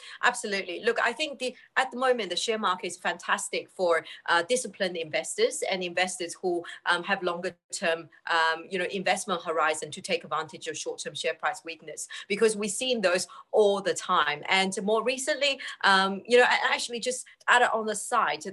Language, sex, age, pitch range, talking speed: English, female, 30-49, 175-245 Hz, 190 wpm